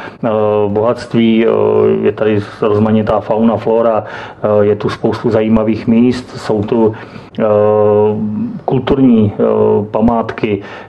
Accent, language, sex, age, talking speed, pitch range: native, Czech, male, 40-59, 85 wpm, 105-115 Hz